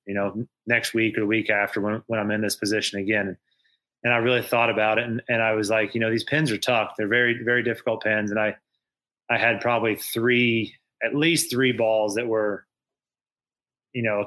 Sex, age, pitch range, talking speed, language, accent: male, 20-39, 105-120 Hz, 215 wpm, English, American